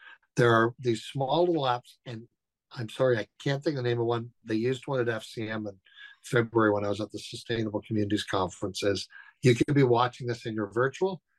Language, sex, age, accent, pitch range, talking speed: English, male, 60-79, American, 115-135 Hz, 210 wpm